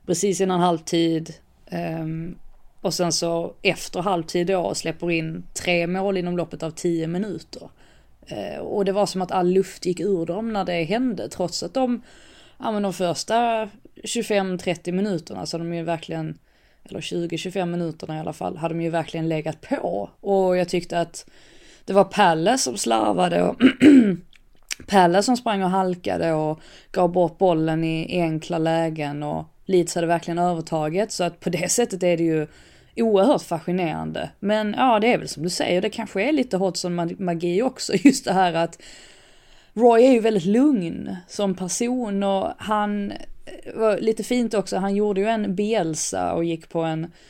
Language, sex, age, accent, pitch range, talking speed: English, female, 20-39, Swedish, 170-205 Hz, 170 wpm